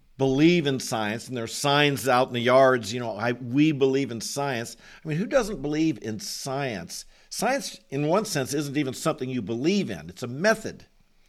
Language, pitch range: English, 120-155 Hz